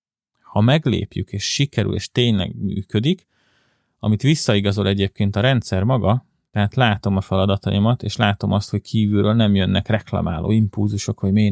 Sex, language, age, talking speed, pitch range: male, Hungarian, 30-49, 145 wpm, 95-110 Hz